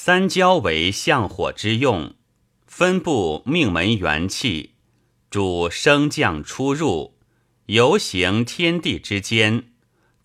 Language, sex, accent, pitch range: Chinese, male, native, 105-165 Hz